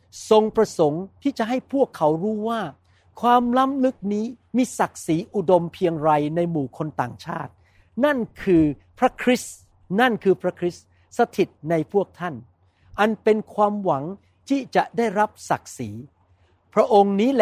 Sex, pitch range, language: male, 135-210 Hz, Thai